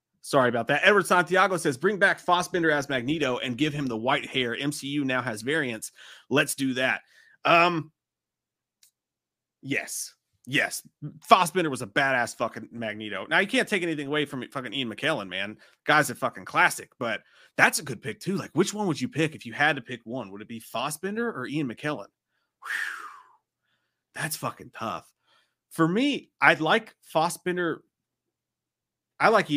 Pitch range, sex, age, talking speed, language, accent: 115-175 Hz, male, 30-49, 170 wpm, English, American